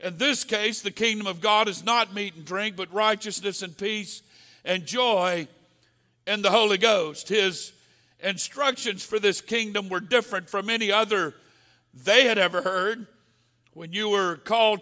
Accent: American